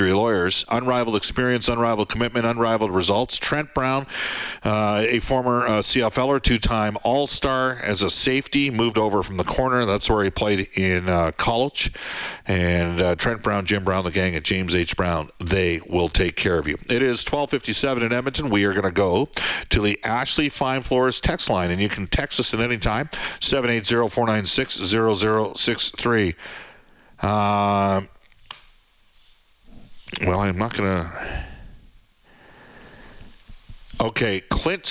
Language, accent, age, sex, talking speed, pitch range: English, American, 50-69, male, 145 wpm, 100-125 Hz